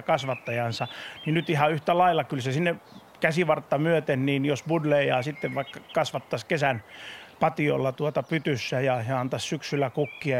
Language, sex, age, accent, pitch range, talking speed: Finnish, male, 30-49, native, 130-160 Hz, 150 wpm